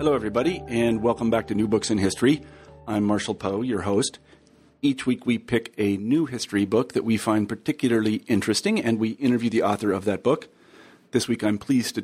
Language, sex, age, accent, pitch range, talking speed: English, male, 40-59, American, 100-120 Hz, 205 wpm